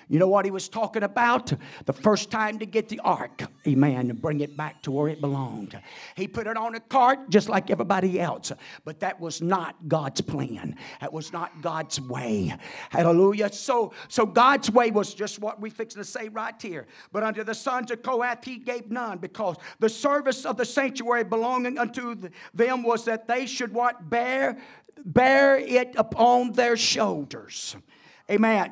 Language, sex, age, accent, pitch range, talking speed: English, male, 50-69, American, 195-265 Hz, 185 wpm